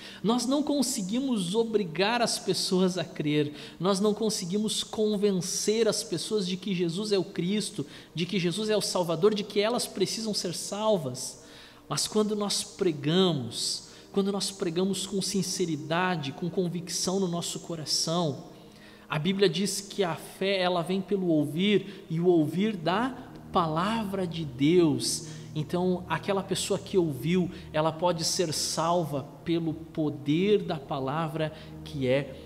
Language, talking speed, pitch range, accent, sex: Portuguese, 145 wpm, 160-205 Hz, Brazilian, male